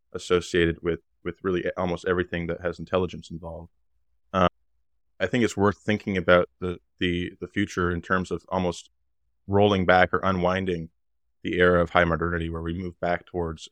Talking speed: 170 wpm